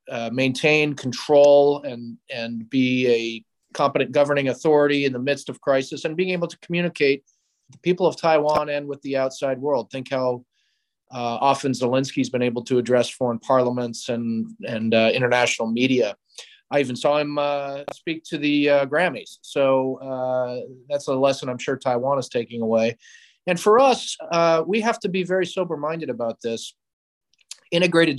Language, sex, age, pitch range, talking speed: English, male, 40-59, 125-150 Hz, 170 wpm